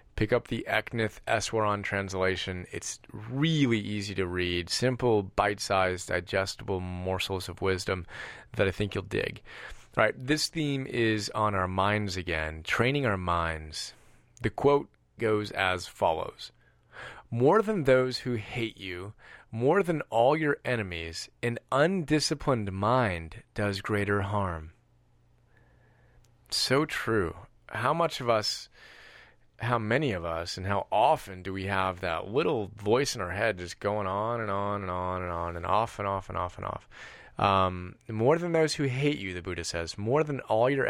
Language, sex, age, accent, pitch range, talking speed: English, male, 30-49, American, 95-120 Hz, 160 wpm